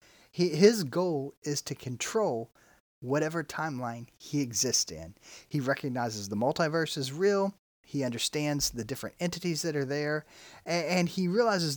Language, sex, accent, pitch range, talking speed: English, male, American, 125-175 Hz, 145 wpm